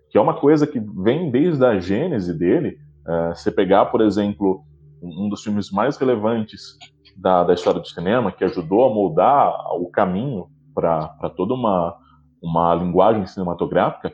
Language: Portuguese